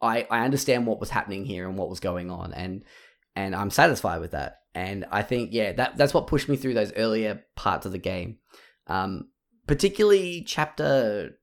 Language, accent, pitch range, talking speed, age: English, Australian, 100-135 Hz, 195 wpm, 10-29